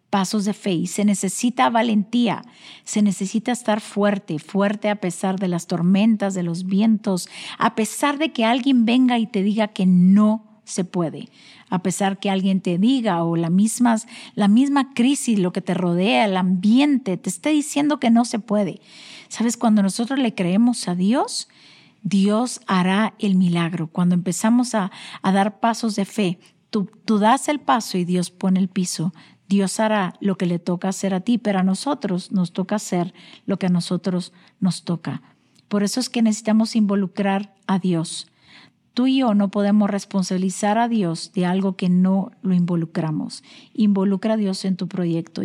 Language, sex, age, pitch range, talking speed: Spanish, female, 50-69, 185-230 Hz, 180 wpm